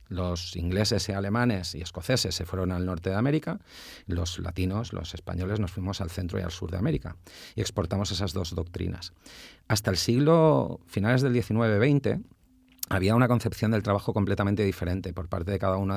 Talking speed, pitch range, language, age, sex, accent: 180 wpm, 90-110 Hz, Spanish, 40-59, male, Spanish